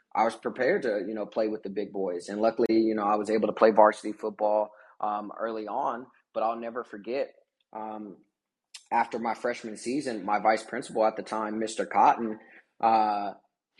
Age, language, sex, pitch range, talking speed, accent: 20-39, English, male, 105-120 Hz, 185 wpm, American